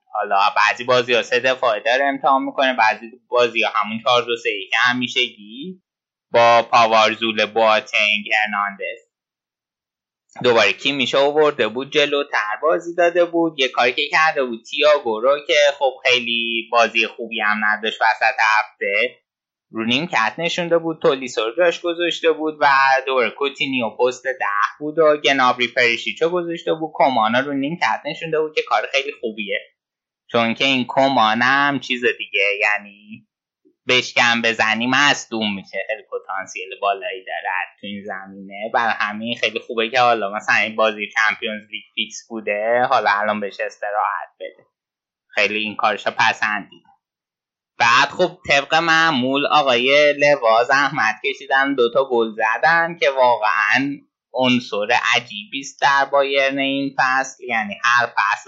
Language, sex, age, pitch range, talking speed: Persian, male, 20-39, 115-170 Hz, 145 wpm